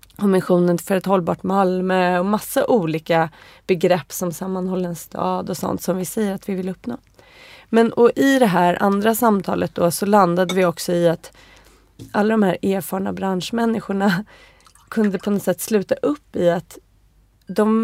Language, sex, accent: Swedish, female, native